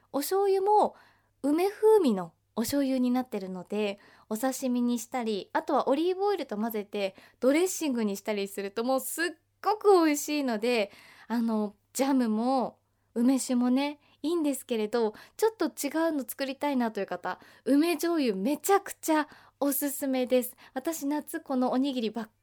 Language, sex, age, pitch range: Japanese, female, 20-39, 215-300 Hz